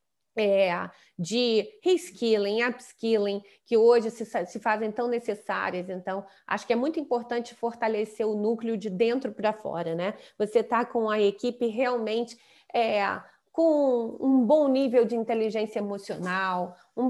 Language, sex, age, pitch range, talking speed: Portuguese, female, 30-49, 215-250 Hz, 140 wpm